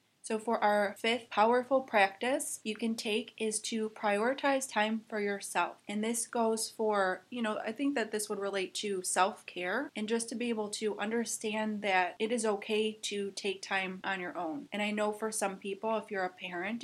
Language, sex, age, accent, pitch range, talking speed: English, female, 30-49, American, 195-225 Hz, 200 wpm